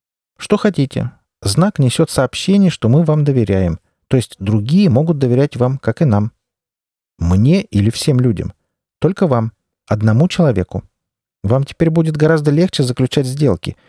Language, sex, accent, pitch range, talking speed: Russian, male, native, 100-150 Hz, 145 wpm